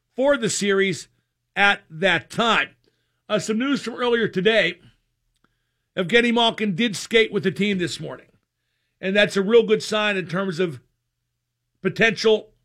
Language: English